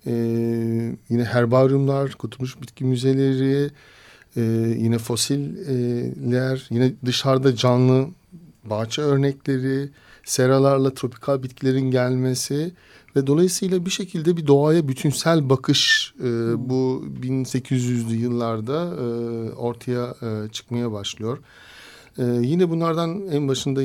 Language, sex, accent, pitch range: Turkish, male, native, 110-135 Hz